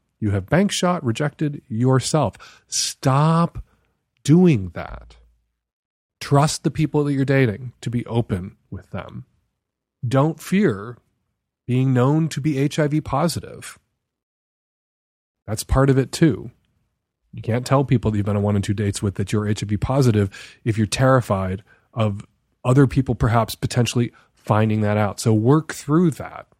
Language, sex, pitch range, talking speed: English, male, 110-155 Hz, 145 wpm